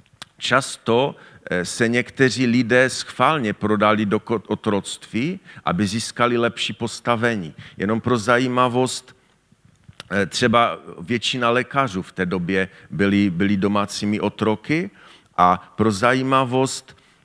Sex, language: male, Czech